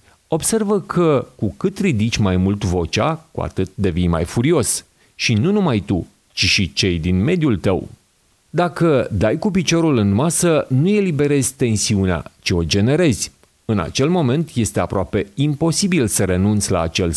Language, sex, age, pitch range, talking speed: Hungarian, male, 40-59, 100-155 Hz, 155 wpm